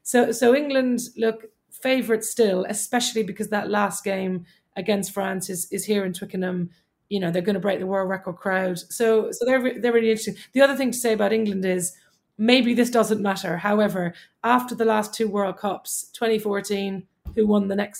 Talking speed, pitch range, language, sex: 195 wpm, 190-220 Hz, English, female